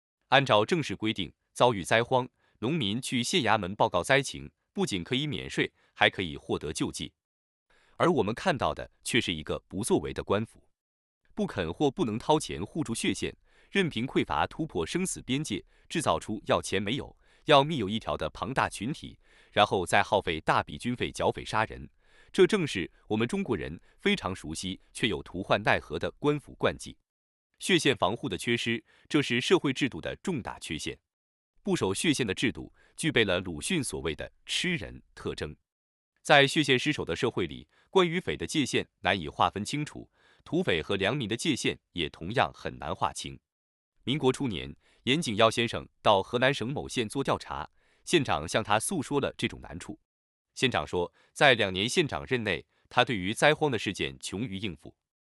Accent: Chinese